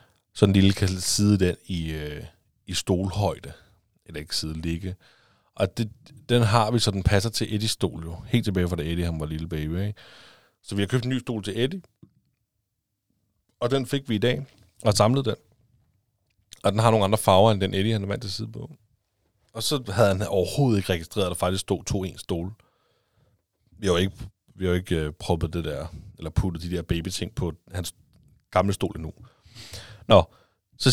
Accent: native